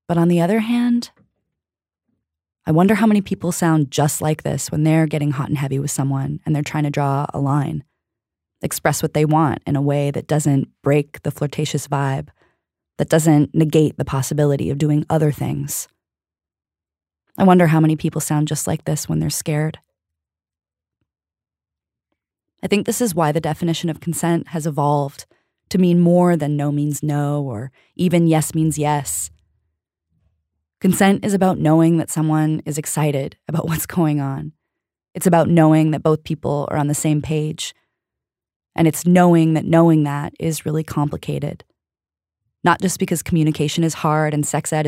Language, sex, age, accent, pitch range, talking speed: English, female, 20-39, American, 145-165 Hz, 170 wpm